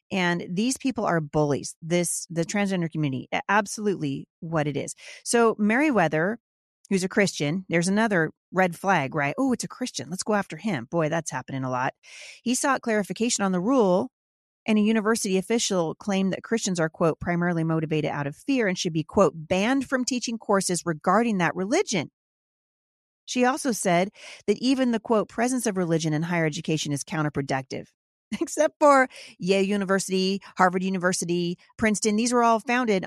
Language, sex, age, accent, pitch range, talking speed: English, female, 30-49, American, 165-220 Hz, 170 wpm